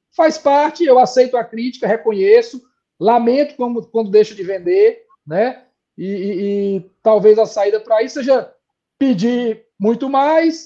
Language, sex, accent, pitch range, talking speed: Portuguese, male, Brazilian, 230-300 Hz, 145 wpm